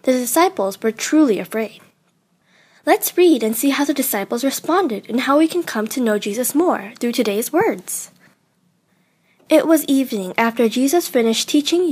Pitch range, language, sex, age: 200-305 Hz, Korean, female, 10-29